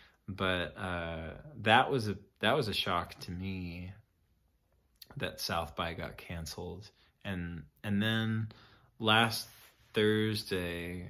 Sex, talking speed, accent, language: male, 115 wpm, American, English